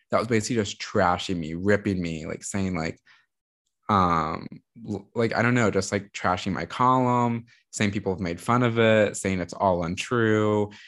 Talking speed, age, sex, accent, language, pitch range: 175 wpm, 20-39, male, American, English, 95-125 Hz